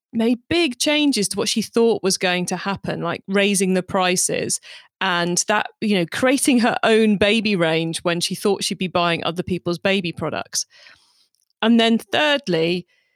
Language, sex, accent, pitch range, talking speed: English, female, British, 175-225 Hz, 170 wpm